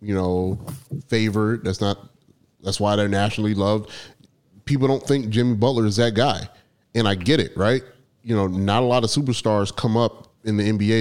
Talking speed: 190 wpm